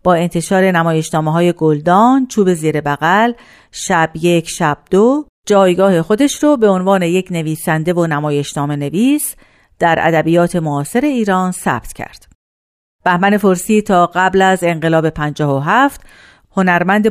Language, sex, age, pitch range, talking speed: Persian, female, 50-69, 160-225 Hz, 125 wpm